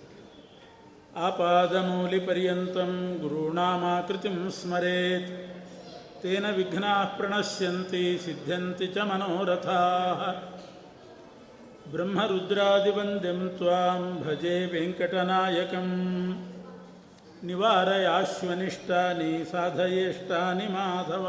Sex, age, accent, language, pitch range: male, 50-69, native, Kannada, 175-185 Hz